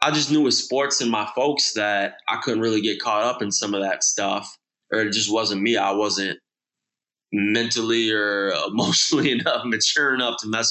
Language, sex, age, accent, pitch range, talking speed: English, male, 20-39, American, 100-120 Hz, 195 wpm